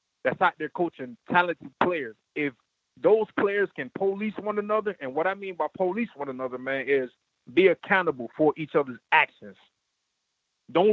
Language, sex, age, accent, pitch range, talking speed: English, male, 30-49, American, 150-190 Hz, 165 wpm